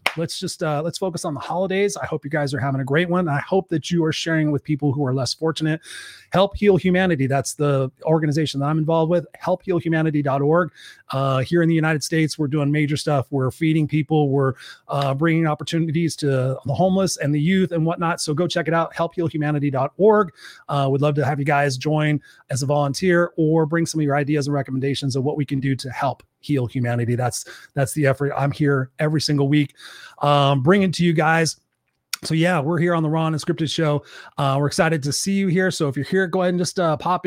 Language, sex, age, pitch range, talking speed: English, male, 30-49, 140-165 Hz, 220 wpm